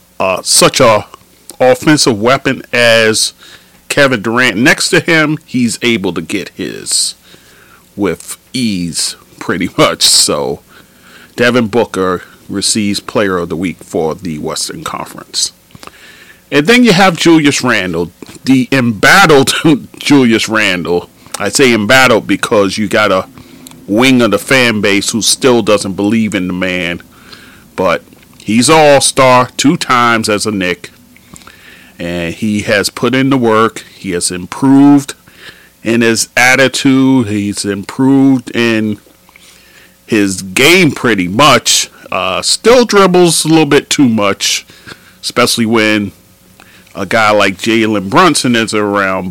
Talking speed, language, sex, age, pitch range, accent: 130 wpm, English, male, 40-59, 100-135 Hz, American